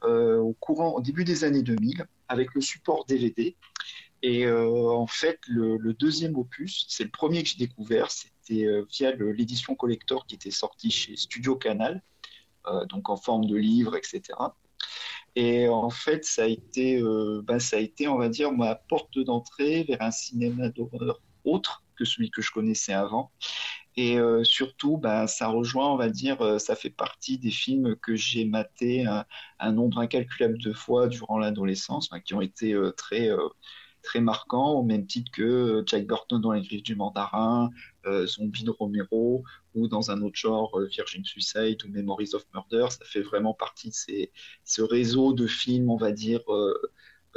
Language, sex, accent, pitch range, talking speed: French, male, French, 110-130 Hz, 180 wpm